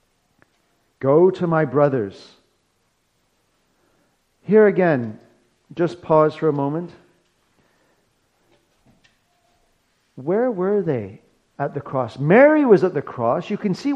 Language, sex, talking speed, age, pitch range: English, male, 110 wpm, 40-59, 125-185 Hz